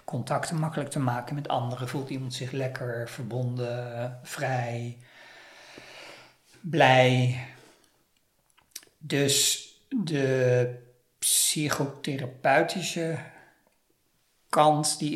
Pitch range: 125-145 Hz